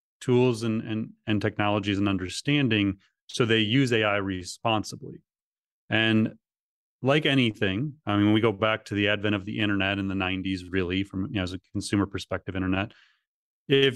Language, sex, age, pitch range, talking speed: English, male, 30-49, 100-125 Hz, 170 wpm